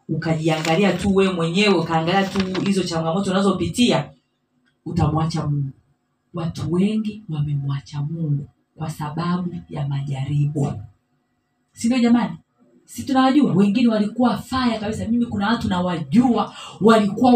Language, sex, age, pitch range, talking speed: Swahili, female, 40-59, 170-245 Hz, 115 wpm